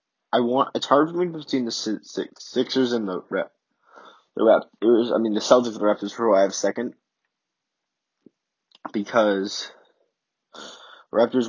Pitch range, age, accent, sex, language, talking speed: 105-120 Hz, 20-39, American, male, English, 170 wpm